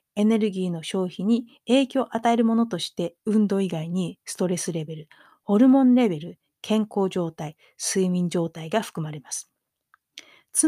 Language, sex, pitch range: Japanese, female, 175-255 Hz